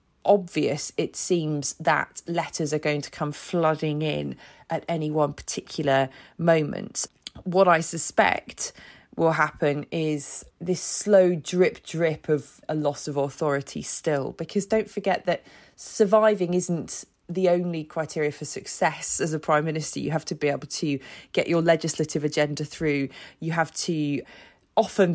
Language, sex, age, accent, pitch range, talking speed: English, female, 20-39, British, 155-180 Hz, 150 wpm